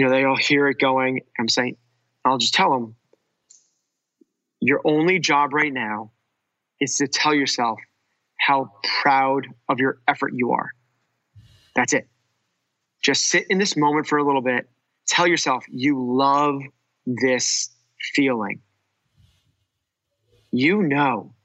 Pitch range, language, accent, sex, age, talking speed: 125-145 Hz, English, American, male, 30-49, 130 wpm